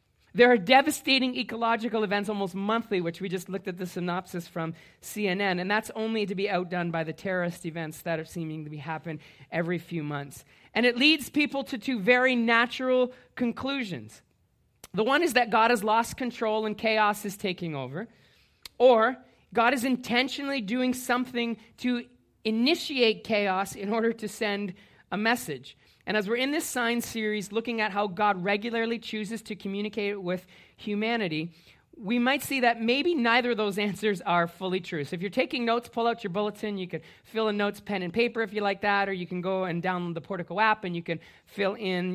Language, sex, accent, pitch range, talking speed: English, male, American, 180-235 Hz, 195 wpm